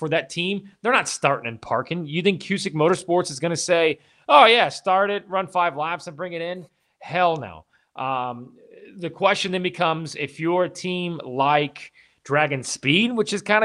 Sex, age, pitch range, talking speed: male, 30-49, 150-185 Hz, 195 wpm